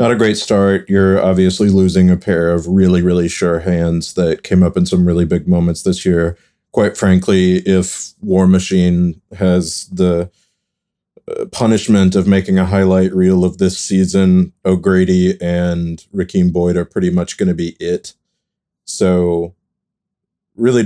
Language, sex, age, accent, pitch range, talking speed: English, male, 30-49, American, 90-105 Hz, 150 wpm